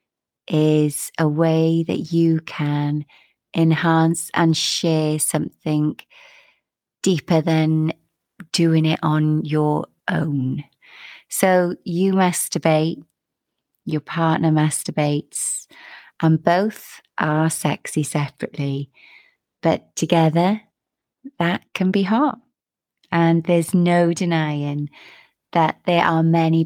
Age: 30-49